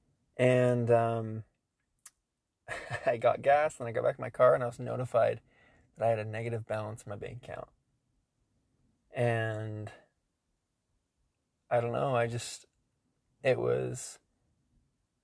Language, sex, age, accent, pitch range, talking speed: English, male, 20-39, American, 110-120 Hz, 135 wpm